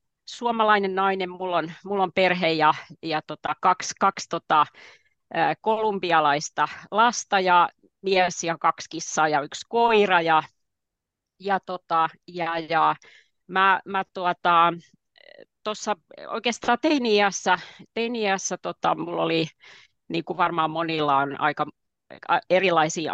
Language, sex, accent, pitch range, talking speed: Finnish, female, native, 155-195 Hz, 115 wpm